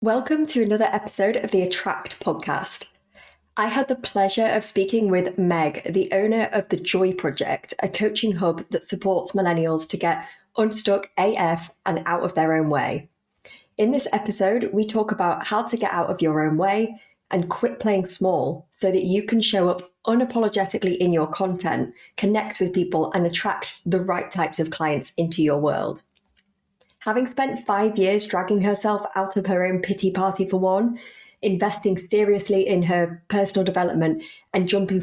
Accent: British